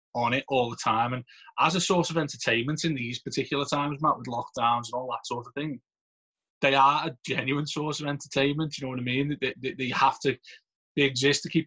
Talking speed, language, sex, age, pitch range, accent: 225 wpm, English, male, 20-39, 120-145 Hz, British